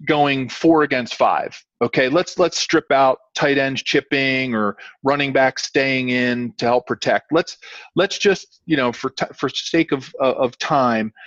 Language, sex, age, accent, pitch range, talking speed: English, male, 40-59, American, 125-155 Hz, 175 wpm